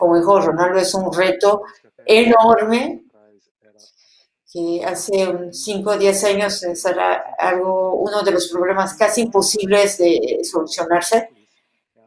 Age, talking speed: 40-59, 110 wpm